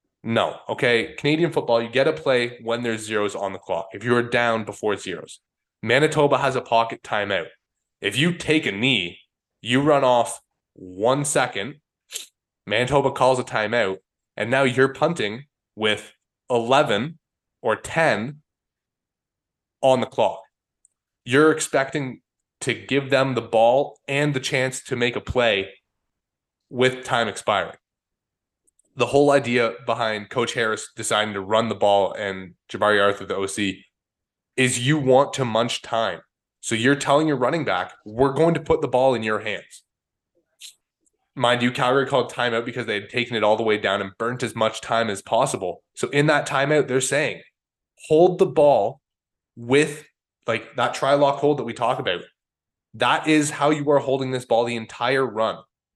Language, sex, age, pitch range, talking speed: English, male, 20-39, 110-140 Hz, 165 wpm